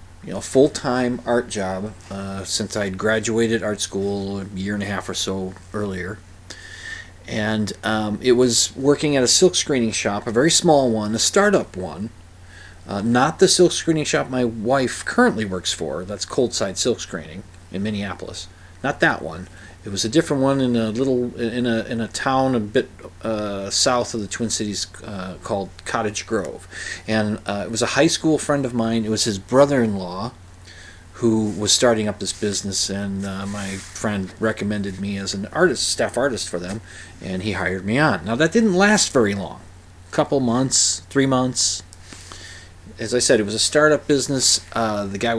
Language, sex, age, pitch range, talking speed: English, male, 40-59, 95-125 Hz, 185 wpm